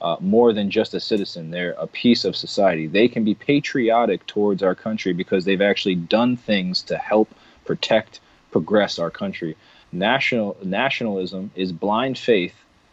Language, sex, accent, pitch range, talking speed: English, male, American, 95-110 Hz, 160 wpm